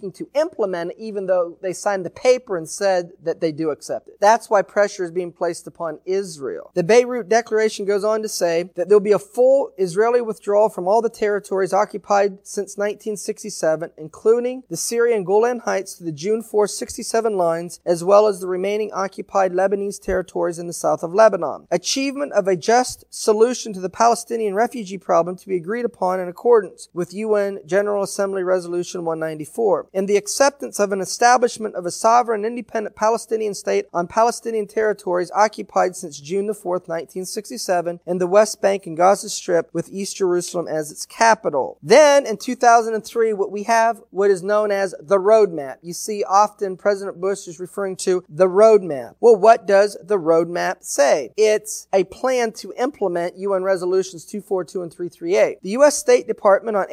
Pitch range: 180-220 Hz